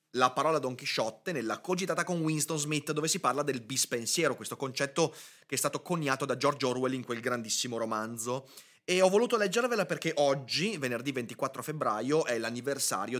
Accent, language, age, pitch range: native, Italian, 30-49, 120-150 Hz